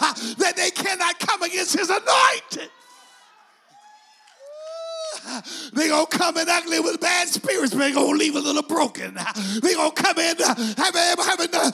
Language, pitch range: English, 215-315 Hz